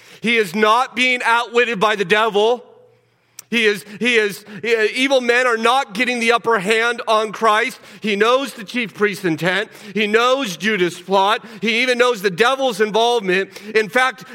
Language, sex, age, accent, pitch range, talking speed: English, male, 40-59, American, 130-215 Hz, 165 wpm